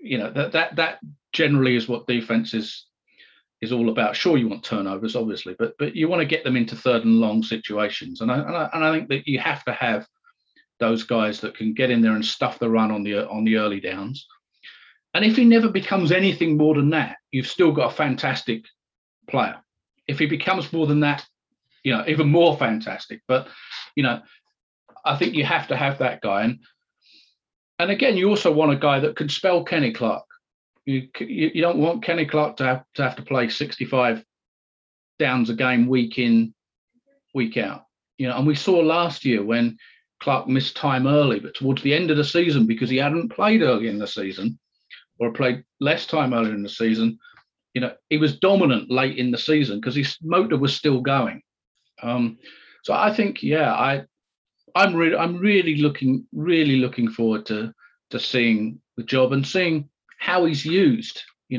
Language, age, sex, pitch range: English, 40-59, male, 120-160 Hz